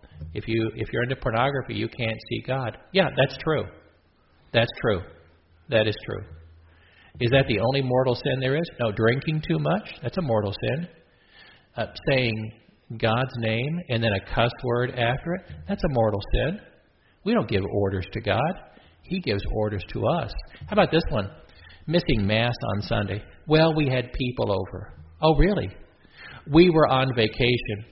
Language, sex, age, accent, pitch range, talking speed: English, male, 50-69, American, 105-150 Hz, 170 wpm